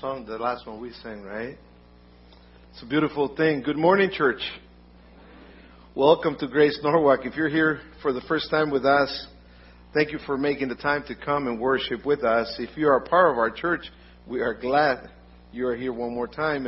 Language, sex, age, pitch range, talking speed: English, male, 50-69, 105-140 Hz, 200 wpm